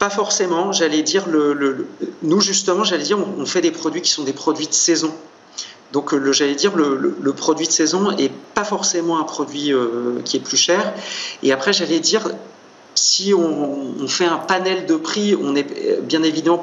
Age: 40-59